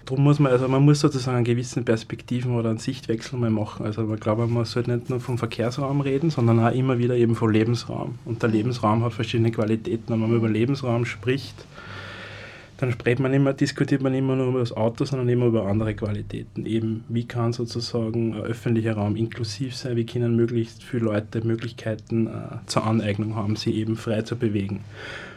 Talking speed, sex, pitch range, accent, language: 195 wpm, male, 115-130 Hz, German, German